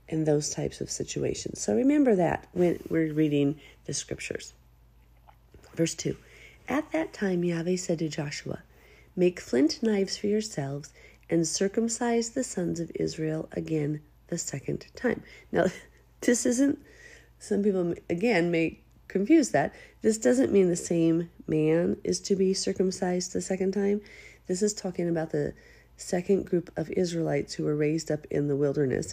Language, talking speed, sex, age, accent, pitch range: English, 155 wpm, female, 40-59, American, 145-200 Hz